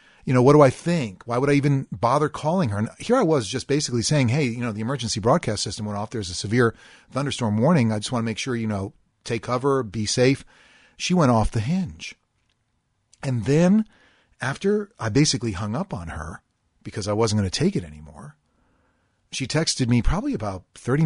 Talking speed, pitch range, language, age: 210 wpm, 105-140 Hz, English, 40-59